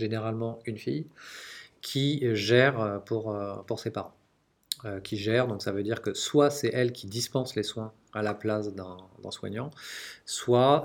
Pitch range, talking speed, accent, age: 105-130 Hz, 165 wpm, French, 40-59